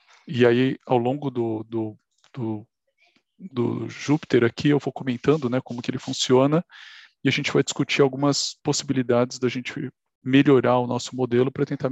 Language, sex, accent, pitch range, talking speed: Portuguese, male, Brazilian, 120-140 Hz, 155 wpm